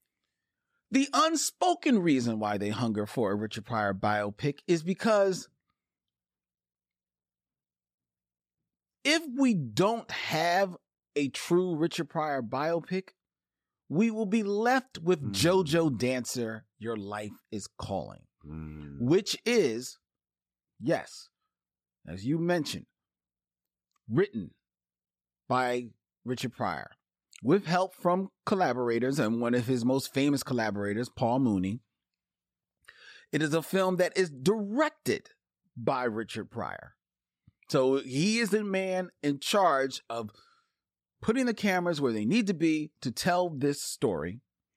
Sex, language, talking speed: male, English, 115 wpm